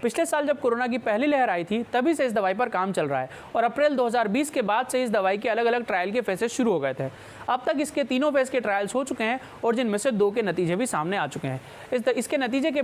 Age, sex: 20-39, male